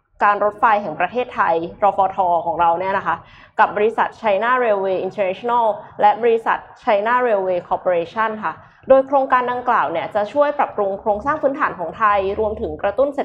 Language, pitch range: Thai, 195-245 Hz